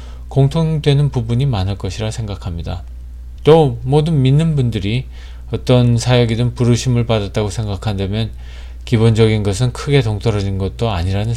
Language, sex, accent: Korean, male, native